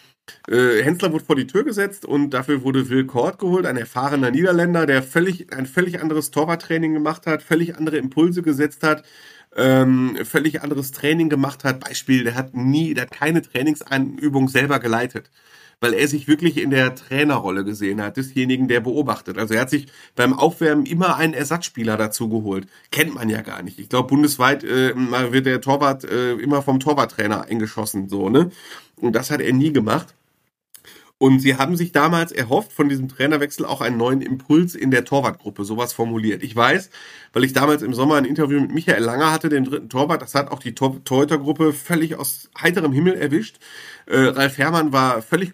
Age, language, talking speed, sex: 40-59, German, 190 wpm, male